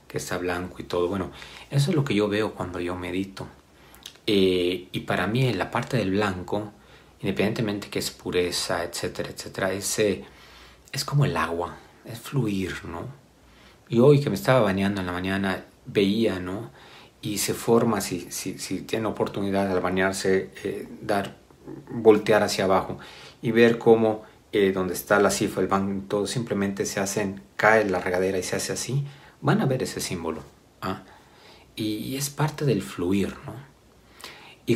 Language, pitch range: Spanish, 90-115 Hz